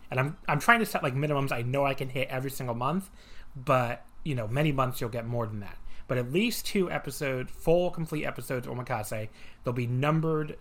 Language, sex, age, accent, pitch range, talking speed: English, male, 30-49, American, 115-140 Hz, 215 wpm